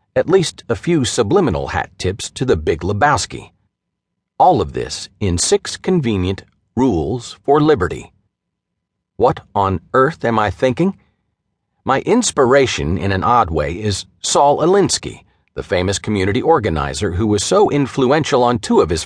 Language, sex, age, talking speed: English, male, 50-69, 150 wpm